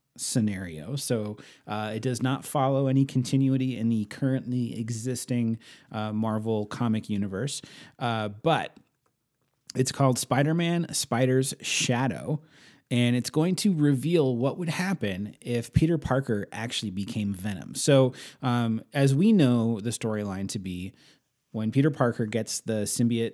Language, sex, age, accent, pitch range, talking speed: English, male, 30-49, American, 110-135 Hz, 140 wpm